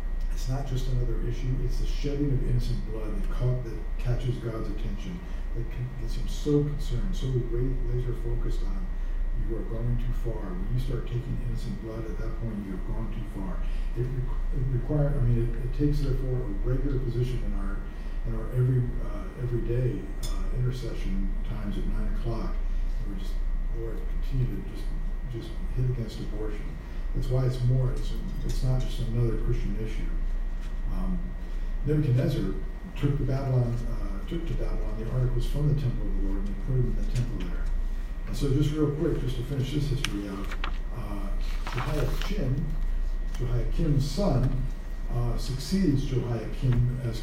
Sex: male